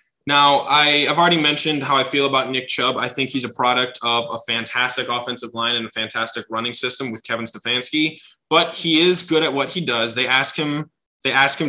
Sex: male